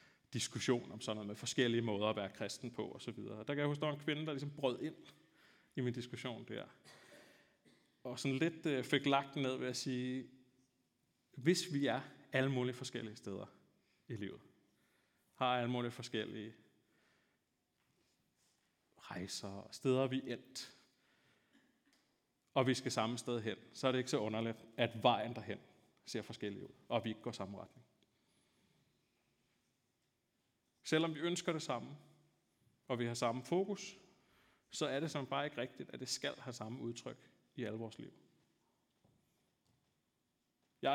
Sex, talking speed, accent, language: male, 150 wpm, native, Danish